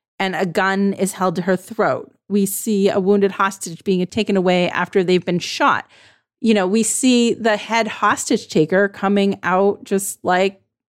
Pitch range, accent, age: 190-230 Hz, American, 30-49